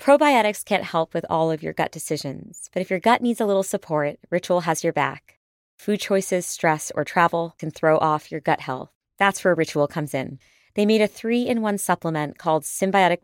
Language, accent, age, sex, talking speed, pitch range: English, American, 20-39, female, 200 wpm, 150-190 Hz